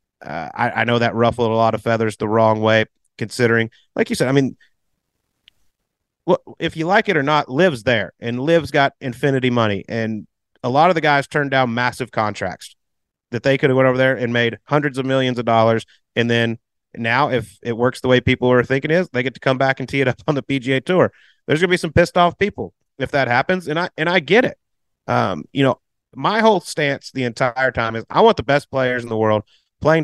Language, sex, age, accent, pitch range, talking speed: English, male, 30-49, American, 115-145 Hz, 230 wpm